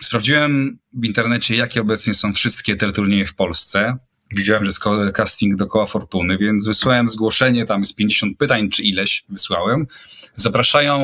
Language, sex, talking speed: Polish, male, 145 wpm